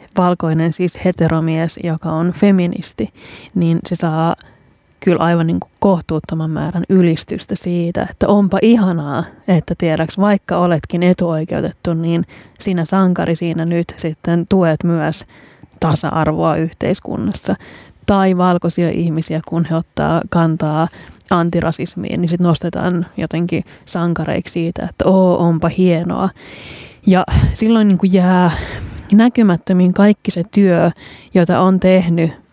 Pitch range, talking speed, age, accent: 165-185 Hz, 120 wpm, 30-49, native